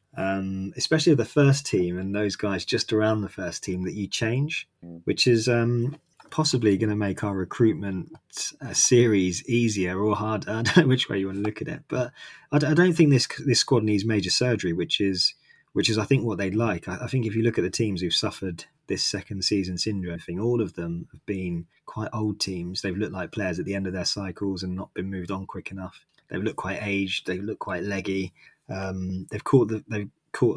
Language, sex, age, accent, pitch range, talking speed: English, male, 20-39, British, 95-115 Hz, 225 wpm